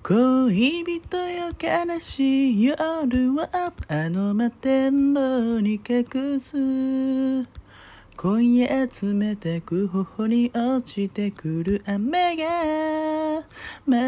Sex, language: male, Japanese